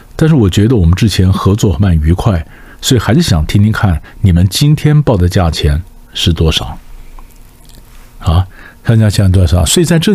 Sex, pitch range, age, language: male, 85-115 Hz, 50-69, Chinese